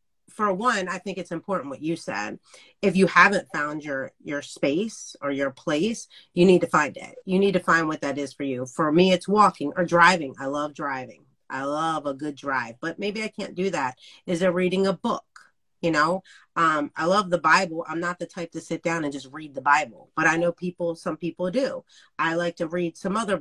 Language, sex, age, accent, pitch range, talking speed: English, female, 30-49, American, 155-190 Hz, 230 wpm